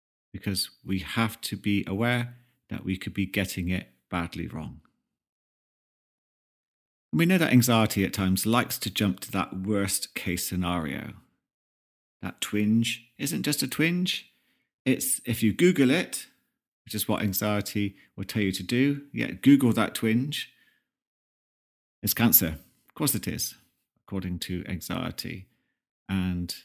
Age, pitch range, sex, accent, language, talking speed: 40-59, 95-115 Hz, male, British, English, 145 wpm